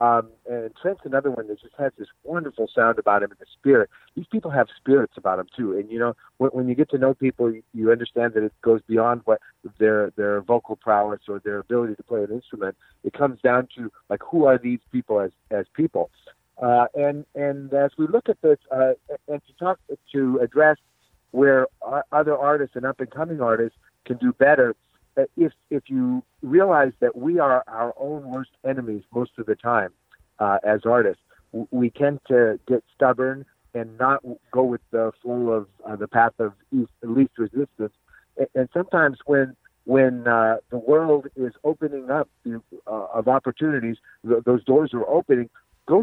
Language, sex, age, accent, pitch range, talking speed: English, male, 50-69, American, 115-145 Hz, 195 wpm